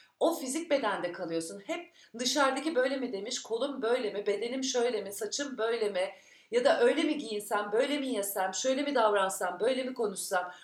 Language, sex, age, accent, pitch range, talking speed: Turkish, female, 40-59, native, 210-280 Hz, 180 wpm